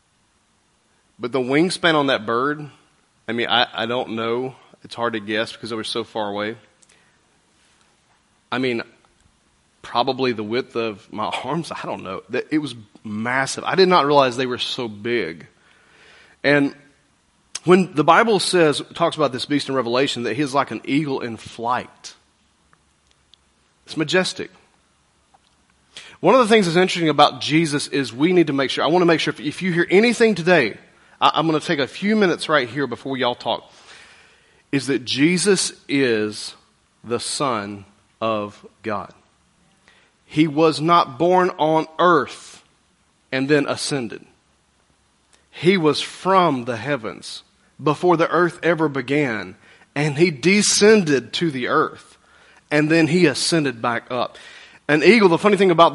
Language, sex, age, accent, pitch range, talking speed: English, male, 30-49, American, 115-170 Hz, 155 wpm